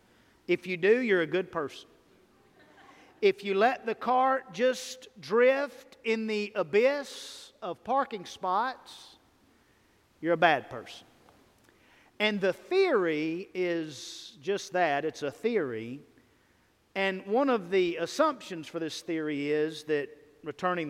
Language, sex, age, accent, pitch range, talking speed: English, male, 50-69, American, 165-245 Hz, 125 wpm